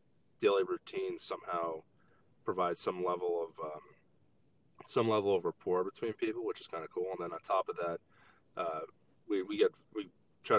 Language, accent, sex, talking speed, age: English, American, male, 175 wpm, 20-39